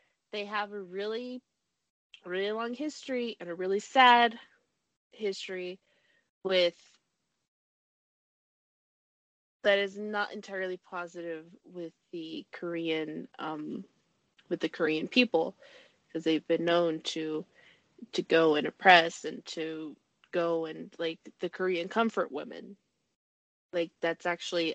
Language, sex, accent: English, female, American